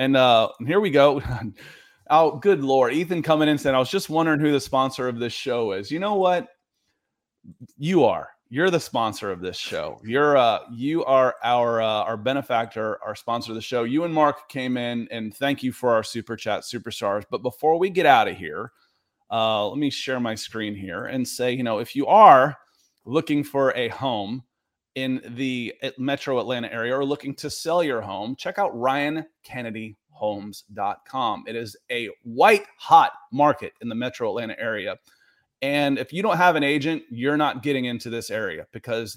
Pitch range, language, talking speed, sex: 115-150 Hz, English, 190 wpm, male